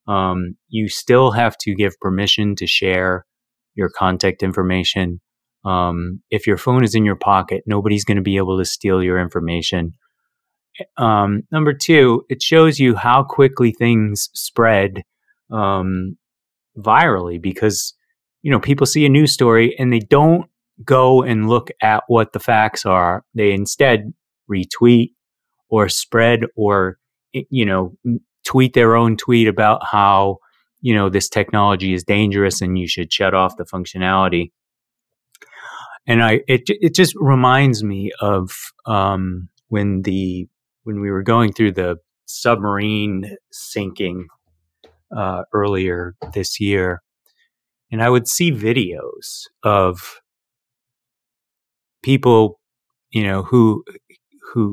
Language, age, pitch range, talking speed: English, 30-49, 95-120 Hz, 135 wpm